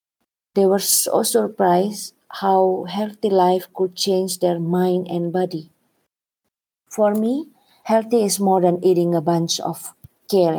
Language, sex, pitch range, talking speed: English, female, 170-200 Hz, 135 wpm